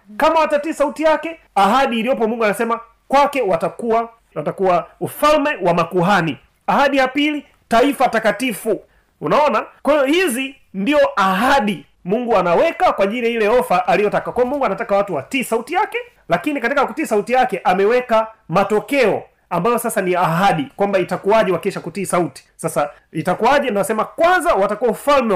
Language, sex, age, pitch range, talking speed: Swahili, male, 30-49, 185-245 Hz, 140 wpm